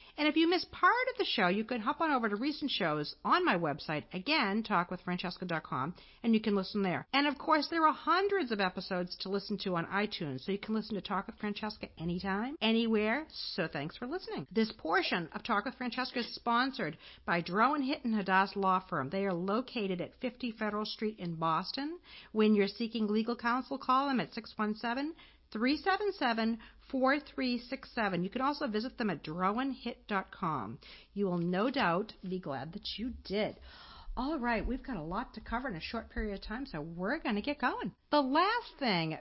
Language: English